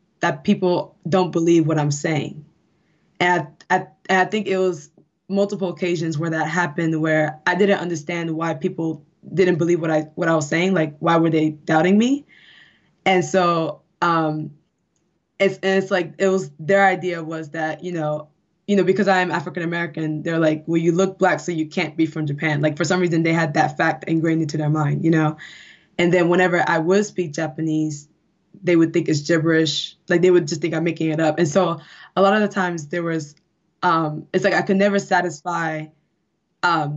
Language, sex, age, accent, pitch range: Japanese, female, 20-39, American, 160-185 Hz